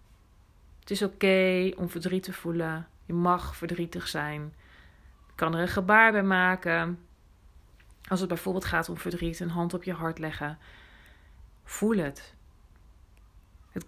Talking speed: 145 wpm